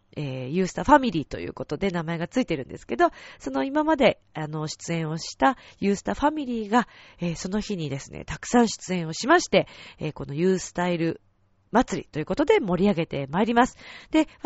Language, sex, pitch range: Japanese, female, 155-235 Hz